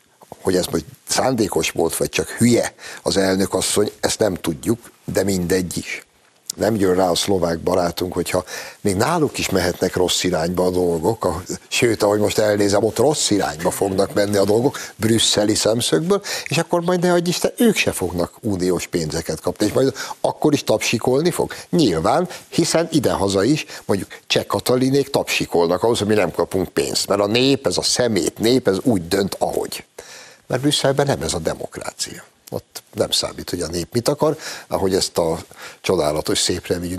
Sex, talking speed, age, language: male, 175 wpm, 60-79, Hungarian